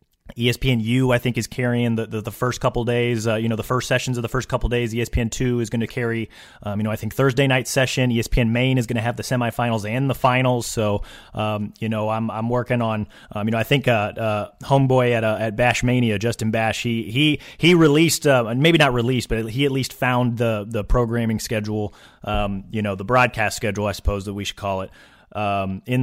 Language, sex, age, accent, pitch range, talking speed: English, male, 30-49, American, 105-125 Hz, 235 wpm